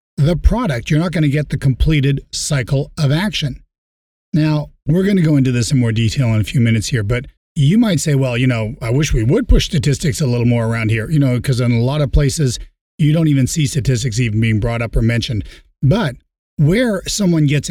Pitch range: 120-150 Hz